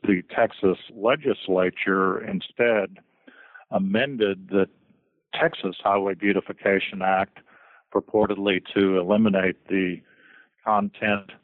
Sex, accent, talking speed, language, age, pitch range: male, American, 80 wpm, English, 50-69, 95-105 Hz